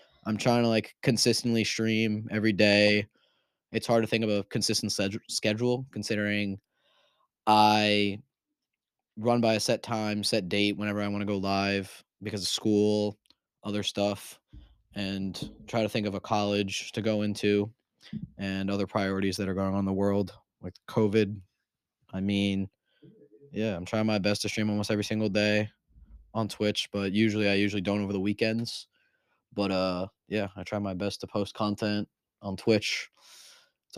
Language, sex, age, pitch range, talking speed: English, male, 20-39, 100-110 Hz, 165 wpm